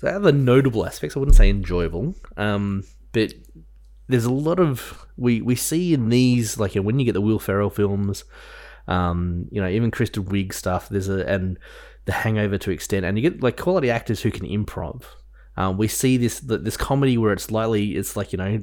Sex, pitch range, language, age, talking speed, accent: male, 95-115 Hz, English, 20-39, 205 wpm, Australian